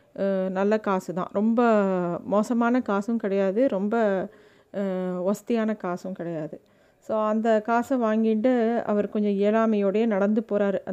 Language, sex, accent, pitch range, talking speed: Tamil, female, native, 195-225 Hz, 110 wpm